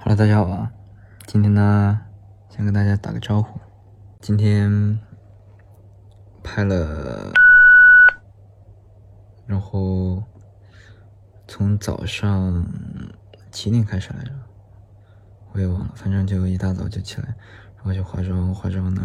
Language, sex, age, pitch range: Chinese, male, 20-39, 95-105 Hz